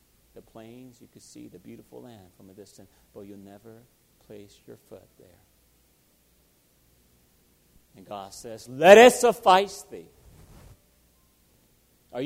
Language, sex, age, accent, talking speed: English, male, 40-59, American, 125 wpm